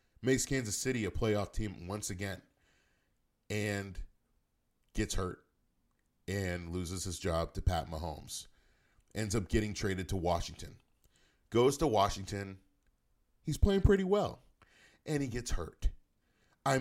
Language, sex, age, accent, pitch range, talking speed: English, male, 40-59, American, 90-115 Hz, 130 wpm